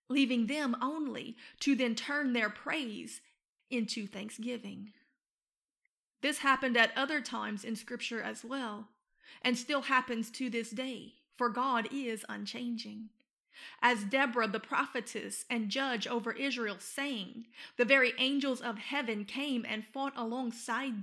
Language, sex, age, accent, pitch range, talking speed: English, female, 30-49, American, 230-270 Hz, 135 wpm